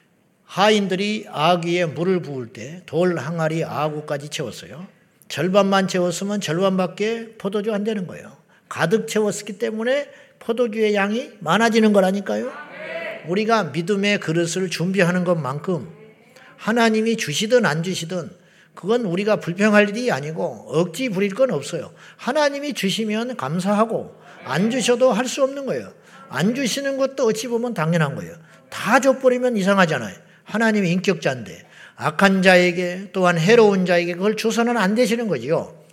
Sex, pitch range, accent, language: male, 170-215 Hz, Japanese, Korean